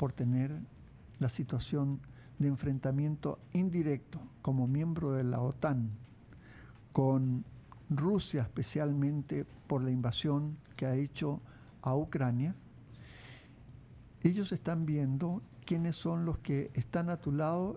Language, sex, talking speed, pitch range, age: Spanish, male, 115 wpm, 130-170 Hz, 60-79